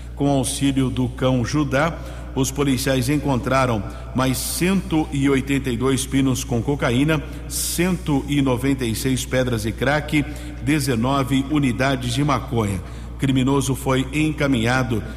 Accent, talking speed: Brazilian, 105 wpm